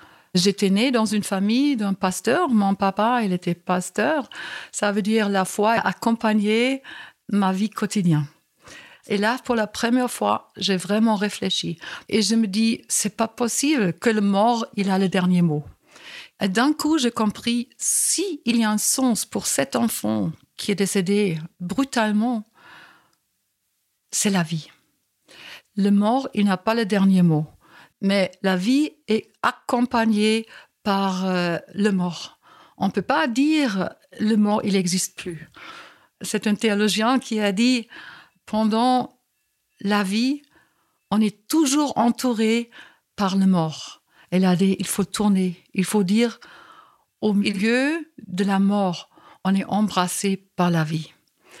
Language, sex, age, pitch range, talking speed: French, female, 60-79, 190-235 Hz, 155 wpm